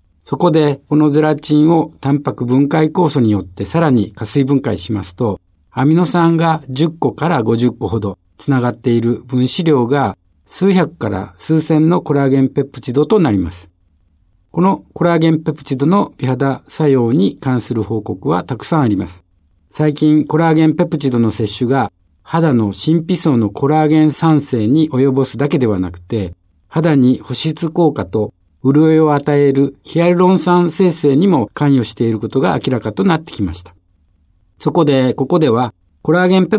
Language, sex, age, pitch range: Japanese, male, 50-69, 105-155 Hz